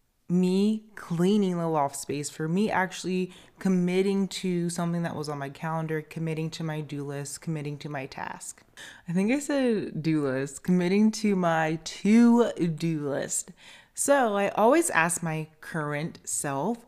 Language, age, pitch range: English, 20-39, 160-220 Hz